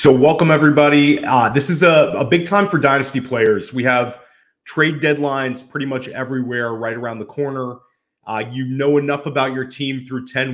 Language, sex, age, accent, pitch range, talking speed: English, male, 30-49, American, 115-140 Hz, 190 wpm